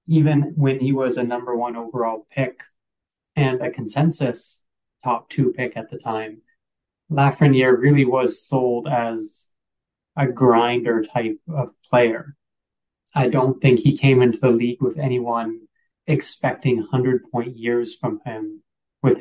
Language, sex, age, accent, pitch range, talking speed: English, male, 20-39, American, 120-140 Hz, 135 wpm